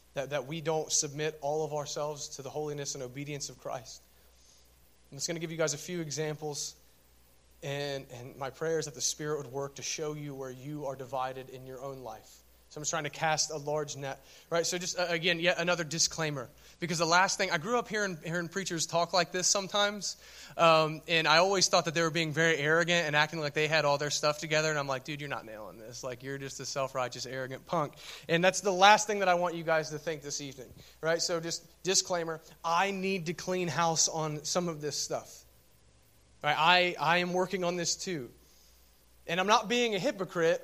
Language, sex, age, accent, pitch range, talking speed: English, male, 30-49, American, 135-170 Hz, 225 wpm